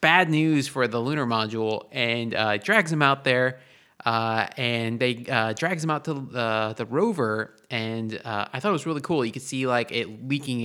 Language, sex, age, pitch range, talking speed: English, male, 20-39, 115-145 Hz, 210 wpm